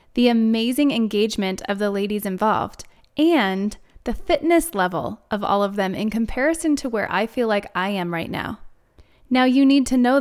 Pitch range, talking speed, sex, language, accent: 205-265 Hz, 180 wpm, female, English, American